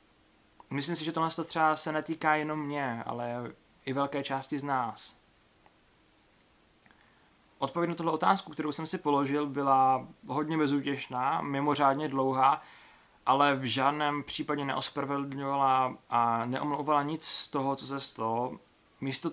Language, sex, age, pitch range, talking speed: Czech, male, 20-39, 135-155 Hz, 130 wpm